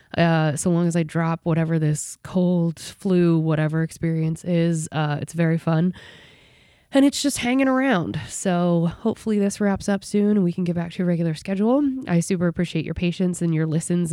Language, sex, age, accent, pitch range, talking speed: English, female, 20-39, American, 160-195 Hz, 190 wpm